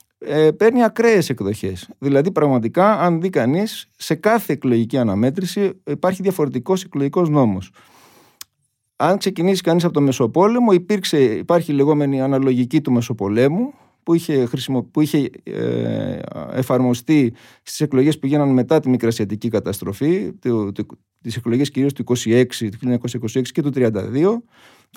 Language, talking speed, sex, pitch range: Greek, 135 wpm, male, 125-185 Hz